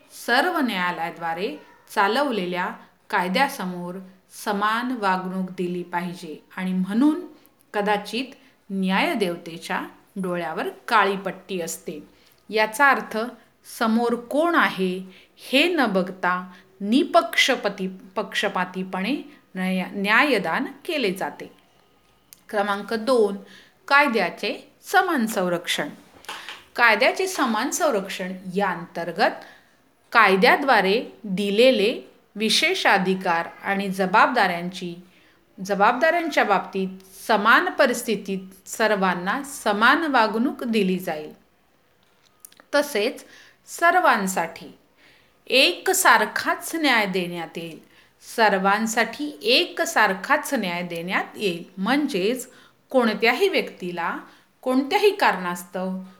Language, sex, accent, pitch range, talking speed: Hindi, female, native, 185-275 Hz, 35 wpm